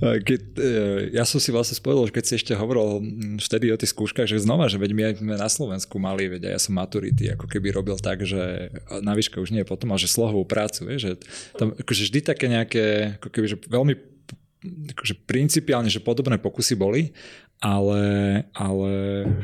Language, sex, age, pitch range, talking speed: Slovak, male, 20-39, 100-115 Hz, 190 wpm